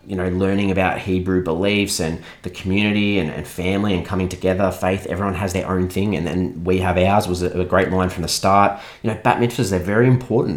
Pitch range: 90-105 Hz